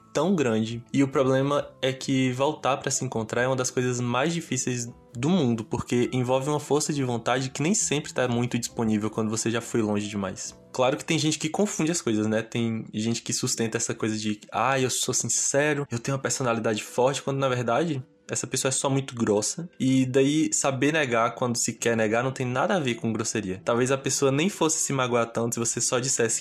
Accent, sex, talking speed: Brazilian, male, 225 wpm